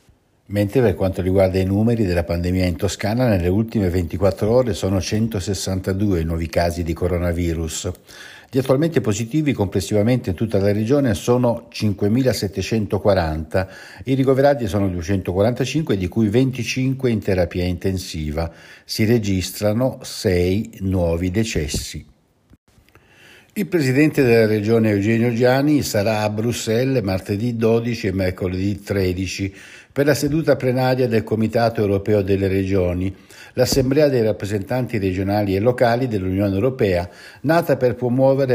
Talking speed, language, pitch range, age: 125 wpm, Italian, 95-125 Hz, 60-79